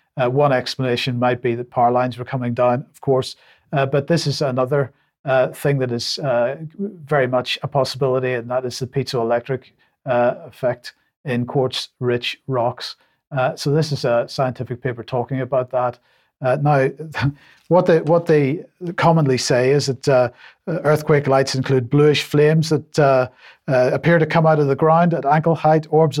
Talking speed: 170 wpm